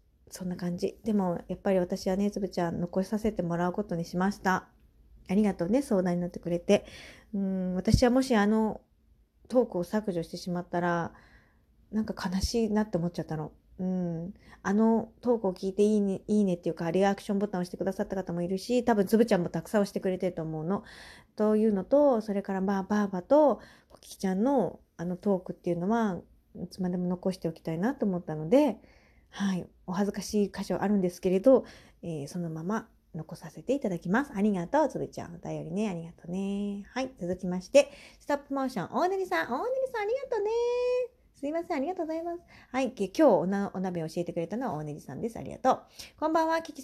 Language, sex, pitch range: Japanese, female, 180-235 Hz